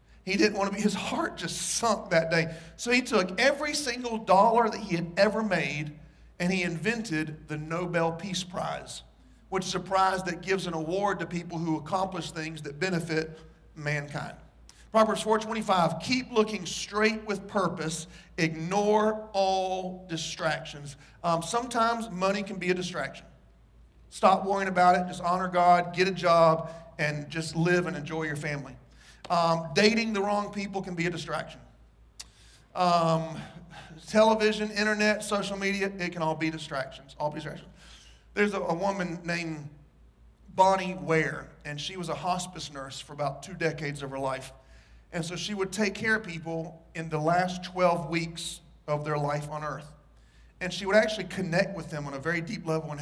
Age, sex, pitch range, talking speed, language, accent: 40-59, male, 155-195 Hz, 170 wpm, English, American